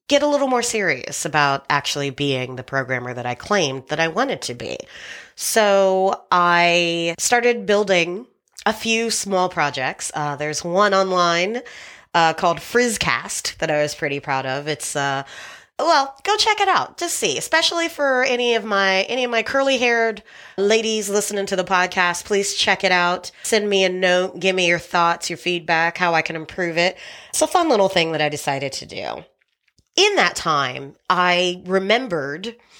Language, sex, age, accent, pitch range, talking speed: English, female, 30-49, American, 165-230 Hz, 175 wpm